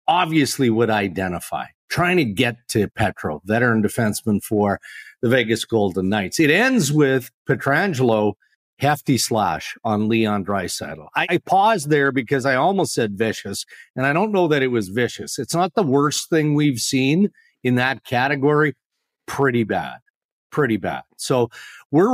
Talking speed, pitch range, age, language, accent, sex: 150 wpm, 115-155 Hz, 50-69, English, American, male